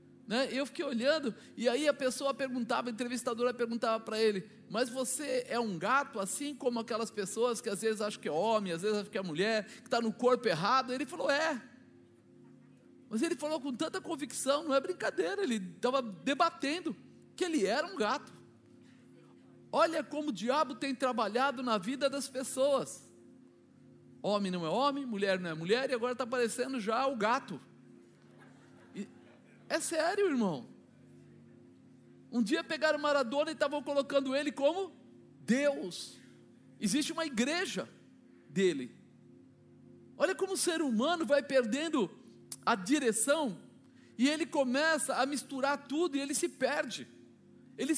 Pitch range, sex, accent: 230-290 Hz, male, Brazilian